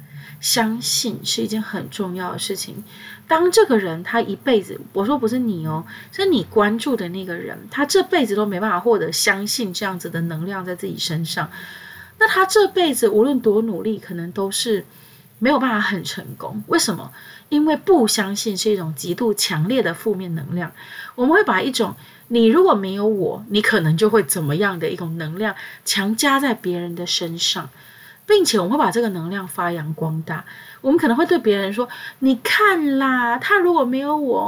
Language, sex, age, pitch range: Chinese, female, 20-39, 180-260 Hz